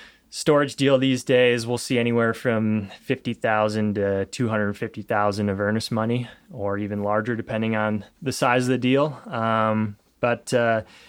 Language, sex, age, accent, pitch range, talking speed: English, male, 20-39, American, 110-135 Hz, 140 wpm